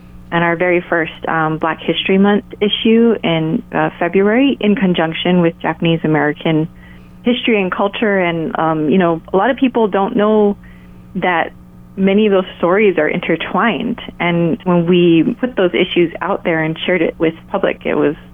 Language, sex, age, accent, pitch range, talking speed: English, female, 30-49, American, 160-200 Hz, 165 wpm